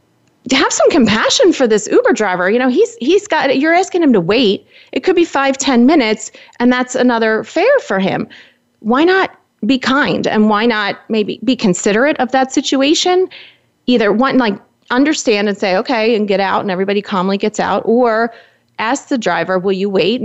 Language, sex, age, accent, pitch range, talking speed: English, female, 30-49, American, 185-255 Hz, 190 wpm